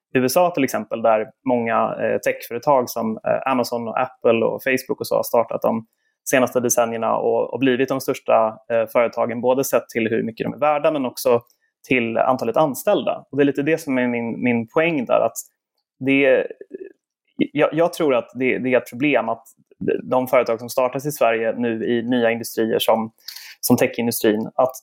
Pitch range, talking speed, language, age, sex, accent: 120-145 Hz, 180 wpm, Swedish, 20-39, male, native